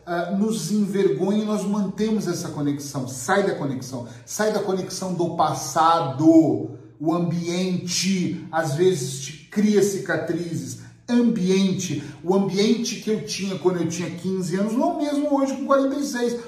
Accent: Brazilian